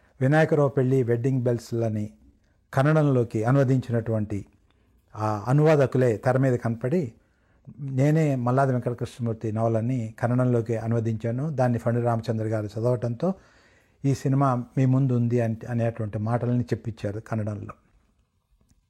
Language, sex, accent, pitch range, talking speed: Telugu, male, native, 110-135 Hz, 100 wpm